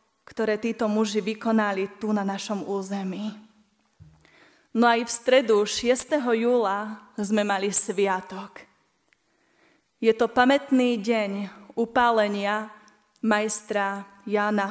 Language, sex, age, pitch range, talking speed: Slovak, female, 20-39, 215-260 Hz, 100 wpm